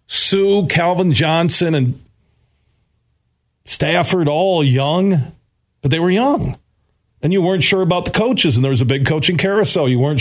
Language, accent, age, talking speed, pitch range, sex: English, American, 40-59, 160 wpm, 125-180 Hz, male